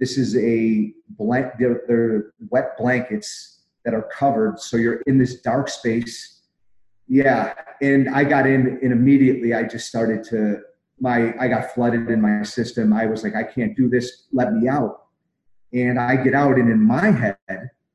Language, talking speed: English, 170 wpm